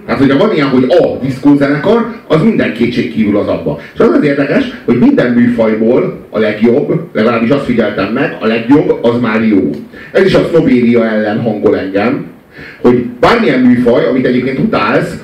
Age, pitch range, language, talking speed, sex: 40-59, 120-170 Hz, Hungarian, 165 wpm, male